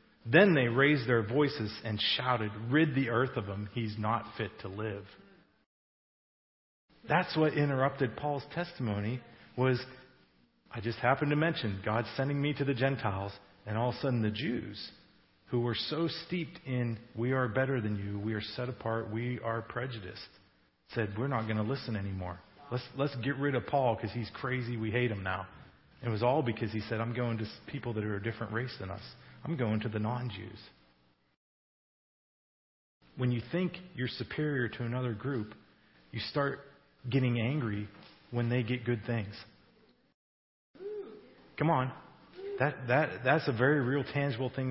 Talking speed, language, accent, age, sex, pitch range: 170 wpm, English, American, 40-59, male, 110-140 Hz